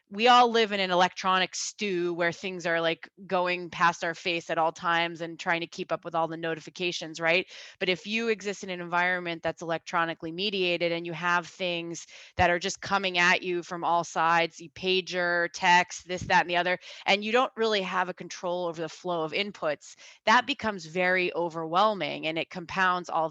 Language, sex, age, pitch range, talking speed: English, female, 20-39, 170-205 Hz, 205 wpm